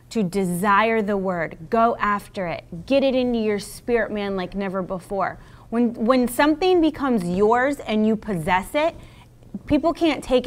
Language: English